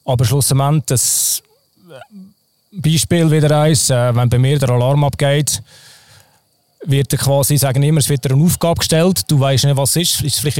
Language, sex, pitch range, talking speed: German, male, 130-155 Hz, 135 wpm